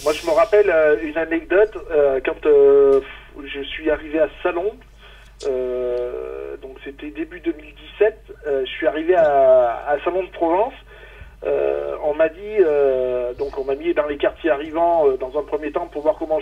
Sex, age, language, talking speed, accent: male, 40-59, French, 180 wpm, French